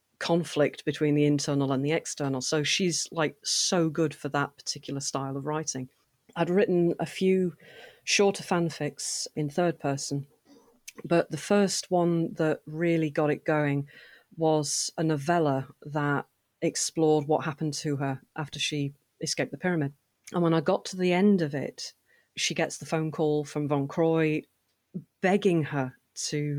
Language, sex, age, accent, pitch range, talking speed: English, female, 40-59, British, 145-170 Hz, 160 wpm